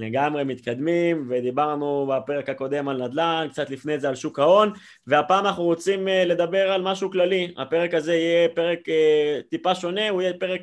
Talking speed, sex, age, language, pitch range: 165 wpm, male, 20-39, Hebrew, 140-175 Hz